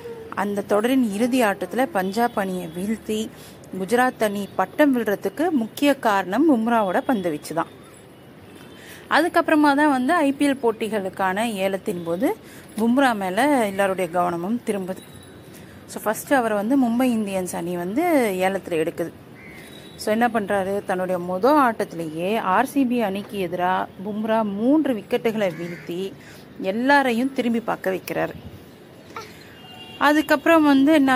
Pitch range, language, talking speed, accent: 190-260 Hz, Tamil, 115 wpm, native